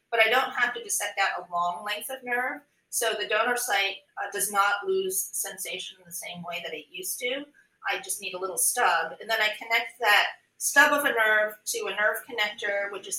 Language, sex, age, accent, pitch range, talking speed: English, female, 30-49, American, 190-265 Hz, 230 wpm